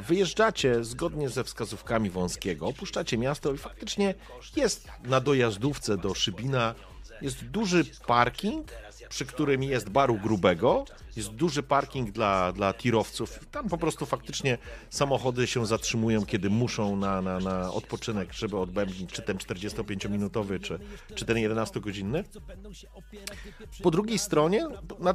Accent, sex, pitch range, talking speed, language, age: native, male, 105-160 Hz, 130 wpm, Polish, 40-59